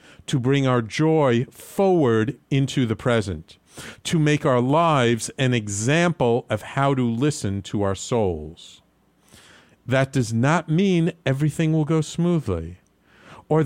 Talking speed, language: 130 wpm, English